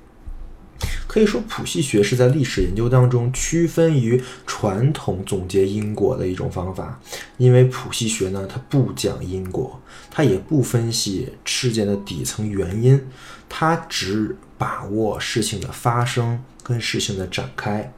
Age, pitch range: 20-39, 100-130 Hz